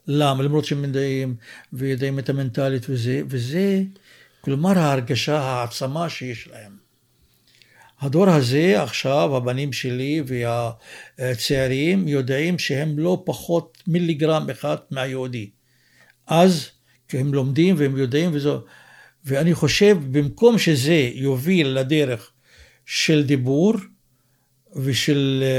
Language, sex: Hebrew, male